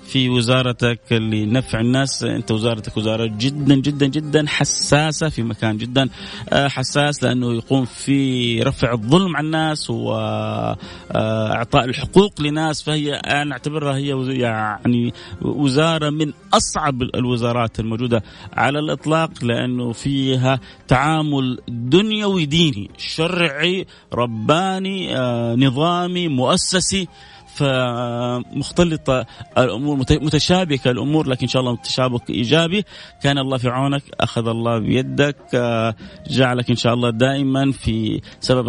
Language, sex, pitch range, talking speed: Arabic, male, 120-145 Hz, 110 wpm